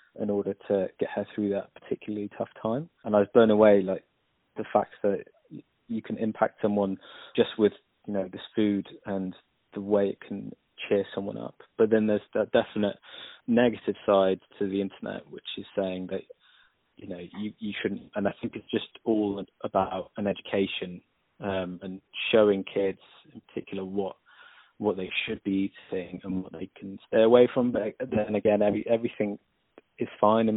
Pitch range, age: 100-110 Hz, 20-39